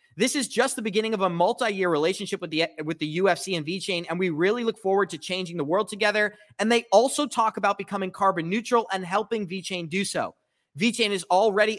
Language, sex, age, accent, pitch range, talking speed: English, male, 30-49, American, 180-225 Hz, 215 wpm